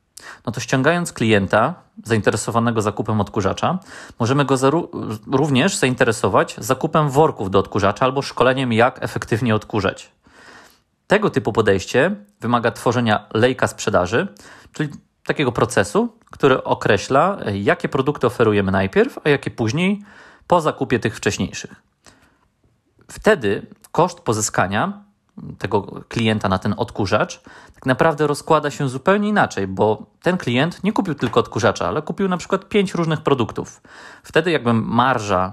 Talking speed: 125 wpm